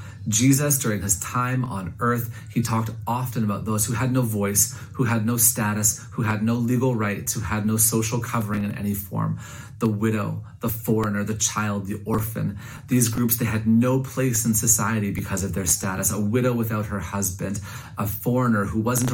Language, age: English, 30-49